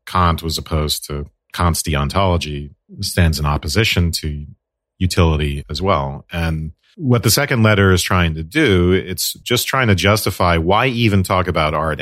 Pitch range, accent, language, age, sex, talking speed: 80-100 Hz, American, English, 40-59, male, 160 wpm